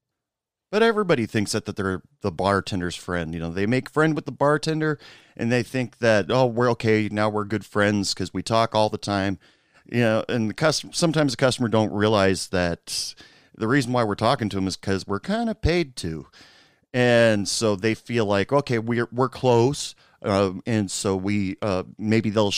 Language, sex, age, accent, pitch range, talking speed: English, male, 40-59, American, 95-130 Hz, 200 wpm